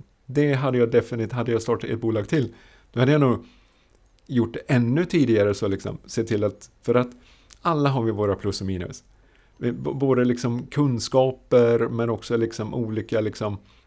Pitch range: 105-125 Hz